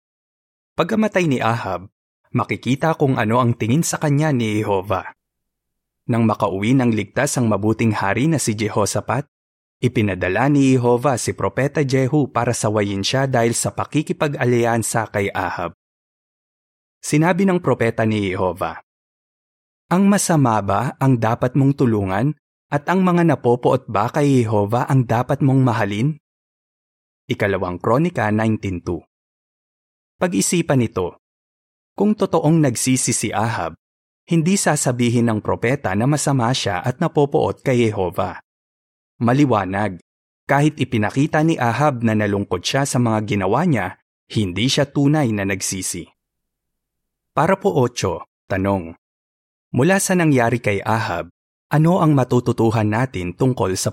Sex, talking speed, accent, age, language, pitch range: male, 125 wpm, native, 20-39, Filipino, 100-140 Hz